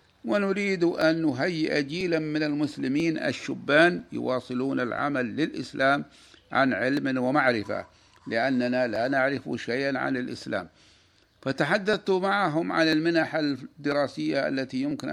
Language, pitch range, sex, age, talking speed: Arabic, 125-150 Hz, male, 50-69, 105 wpm